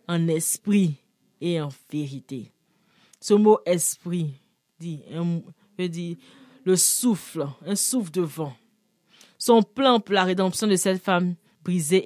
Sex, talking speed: female, 125 wpm